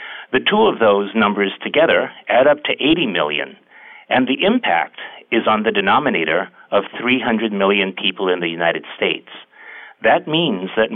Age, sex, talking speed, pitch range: 50-69, male, 160 wpm, 100-135 Hz